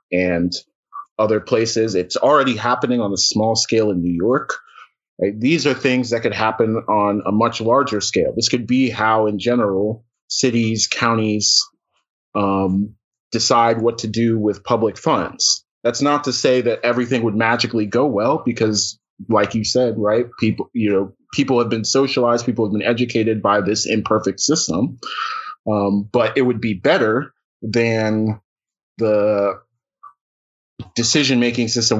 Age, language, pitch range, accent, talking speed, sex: 30-49, English, 100-120 Hz, American, 150 wpm, male